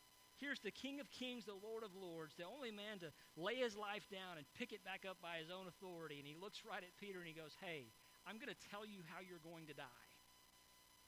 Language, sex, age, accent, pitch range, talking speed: English, male, 50-69, American, 170-225 Hz, 250 wpm